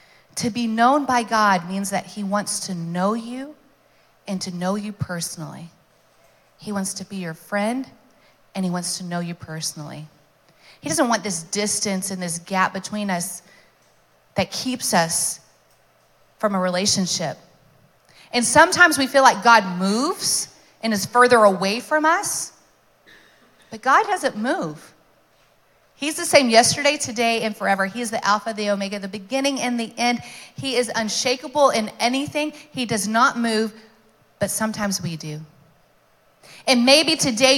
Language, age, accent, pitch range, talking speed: English, 30-49, American, 190-250 Hz, 155 wpm